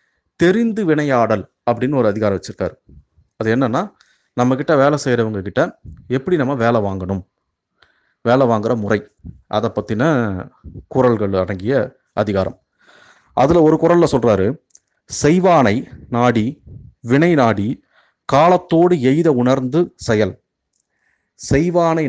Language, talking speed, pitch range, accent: Tamil, 100 wpm, 110-150 Hz, native